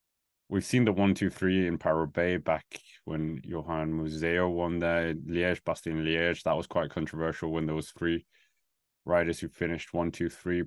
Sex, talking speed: male, 150 wpm